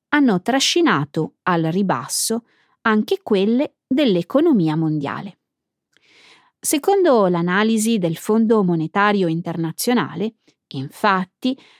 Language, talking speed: Italian, 75 wpm